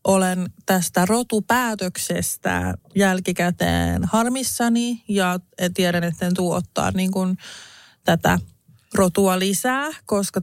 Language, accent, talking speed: Finnish, native, 85 wpm